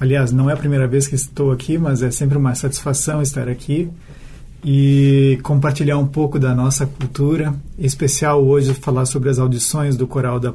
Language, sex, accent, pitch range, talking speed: Portuguese, male, Brazilian, 135-160 Hz, 190 wpm